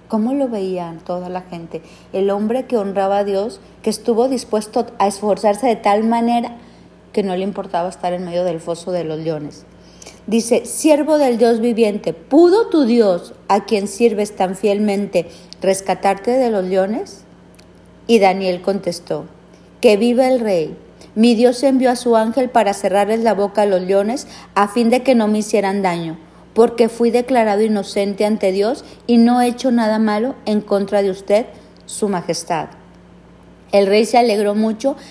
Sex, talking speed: female, 170 wpm